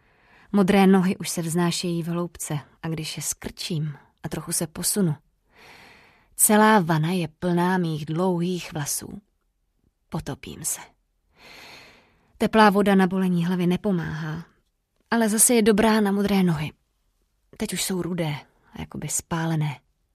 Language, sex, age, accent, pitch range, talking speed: Czech, female, 20-39, native, 160-190 Hz, 130 wpm